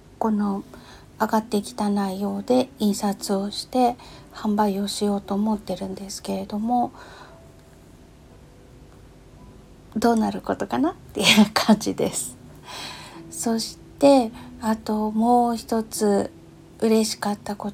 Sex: female